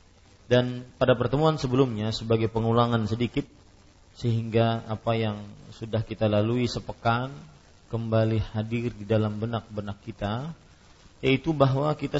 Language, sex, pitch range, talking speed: Malay, male, 100-120 Hz, 115 wpm